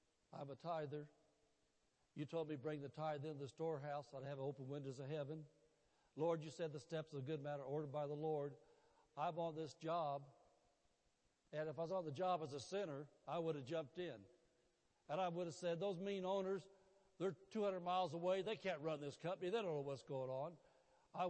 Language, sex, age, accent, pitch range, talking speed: English, male, 60-79, American, 150-190 Hz, 215 wpm